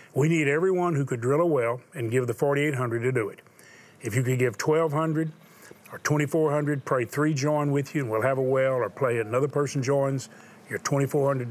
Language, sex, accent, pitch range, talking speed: English, male, American, 125-150 Hz, 205 wpm